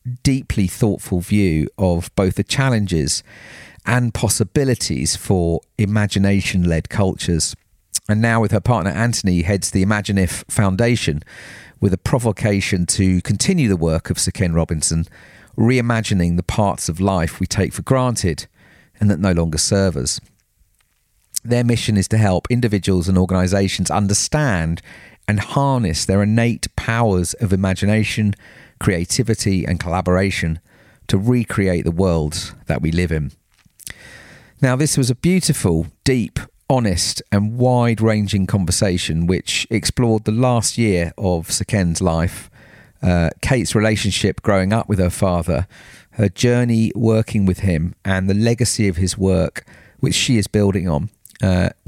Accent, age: British, 40-59